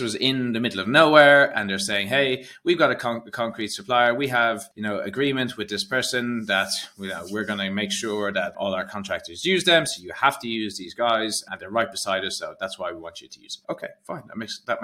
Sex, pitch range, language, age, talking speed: male, 105-145 Hz, English, 20-39, 245 wpm